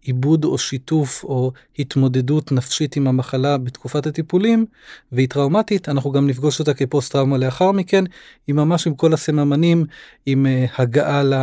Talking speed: 135 wpm